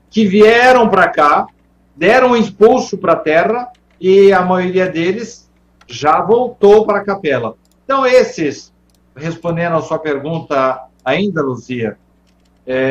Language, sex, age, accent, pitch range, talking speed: Portuguese, male, 60-79, Brazilian, 130-195 Hz, 130 wpm